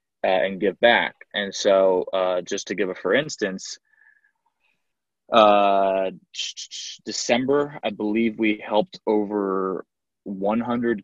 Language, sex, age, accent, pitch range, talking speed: English, male, 20-39, American, 95-120 Hz, 110 wpm